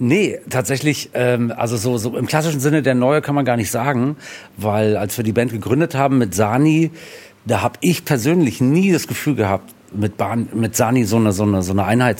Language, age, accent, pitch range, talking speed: German, 50-69, German, 100-125 Hz, 210 wpm